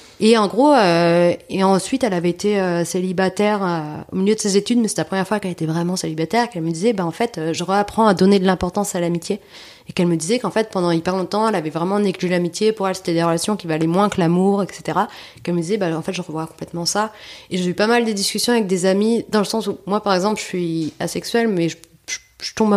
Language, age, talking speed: French, 30-49, 270 wpm